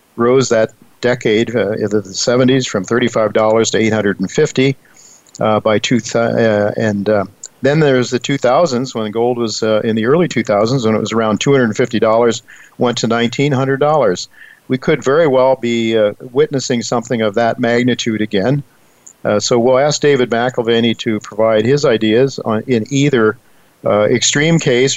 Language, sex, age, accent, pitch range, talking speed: English, male, 50-69, American, 110-125 Hz, 150 wpm